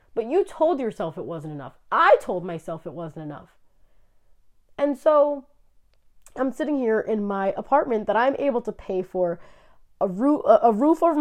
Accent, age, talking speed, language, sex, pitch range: American, 30-49, 165 wpm, English, female, 195-285 Hz